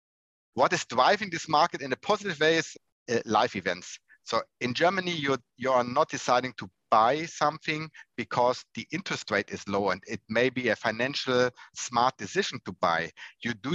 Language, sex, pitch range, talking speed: English, male, 110-150 Hz, 185 wpm